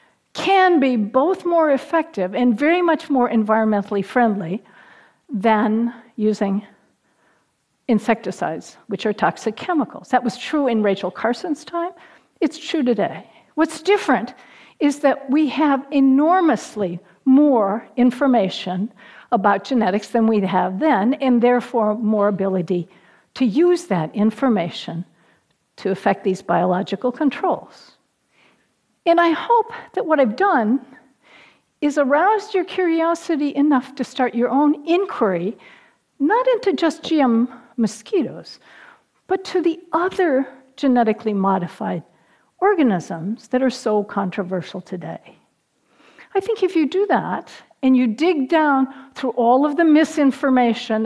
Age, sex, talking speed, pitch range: 50-69, female, 125 wpm, 210-315 Hz